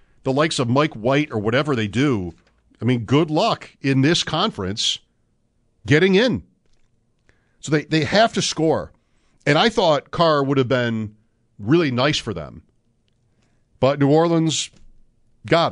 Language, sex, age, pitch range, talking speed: English, male, 50-69, 110-155 Hz, 150 wpm